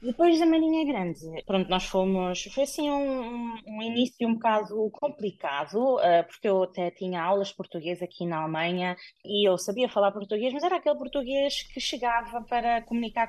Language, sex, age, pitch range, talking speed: Portuguese, female, 20-39, 180-255 Hz, 170 wpm